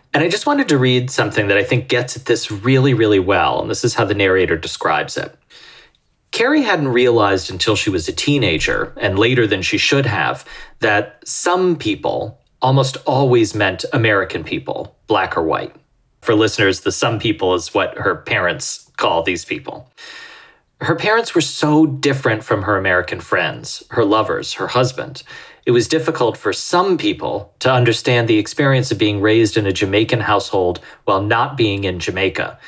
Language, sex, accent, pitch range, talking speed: English, male, American, 110-145 Hz, 175 wpm